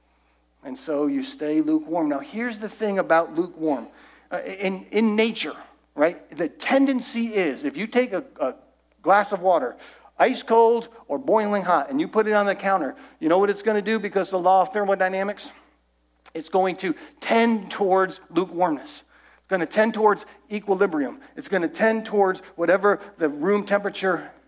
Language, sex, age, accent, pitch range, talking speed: English, male, 50-69, American, 170-220 Hz, 175 wpm